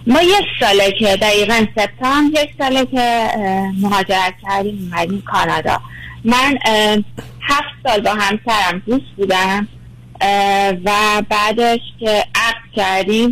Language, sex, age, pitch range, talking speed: Persian, female, 30-49, 195-245 Hz, 115 wpm